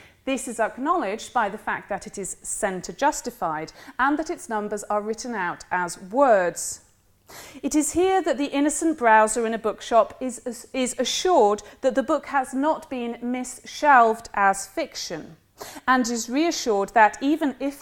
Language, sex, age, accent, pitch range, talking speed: English, female, 30-49, British, 215-285 Hz, 160 wpm